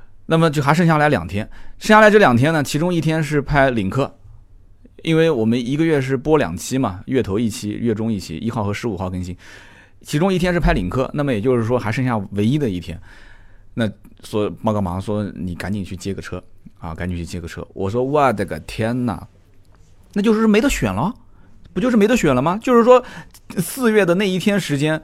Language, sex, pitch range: Chinese, male, 100-150 Hz